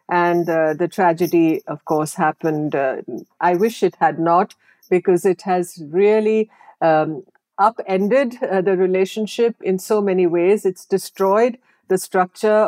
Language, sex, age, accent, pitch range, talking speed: English, female, 50-69, Indian, 170-215 Hz, 140 wpm